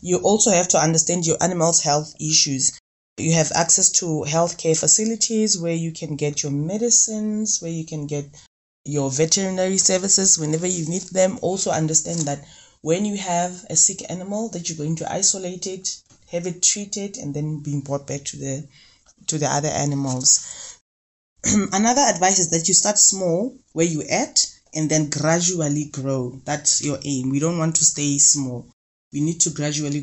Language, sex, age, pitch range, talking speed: English, female, 20-39, 150-185 Hz, 175 wpm